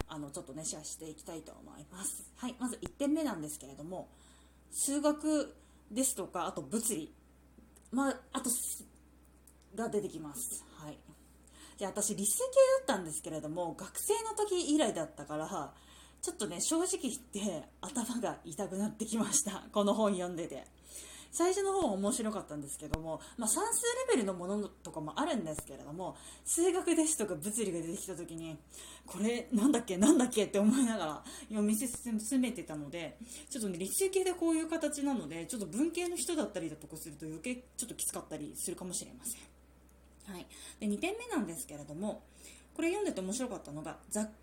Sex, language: female, Japanese